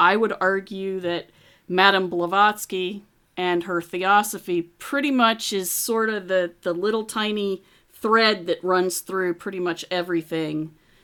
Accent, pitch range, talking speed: American, 165-200 Hz, 135 wpm